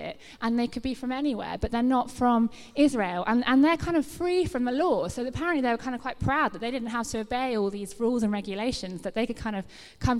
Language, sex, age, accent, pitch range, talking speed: English, female, 20-39, British, 230-300 Hz, 265 wpm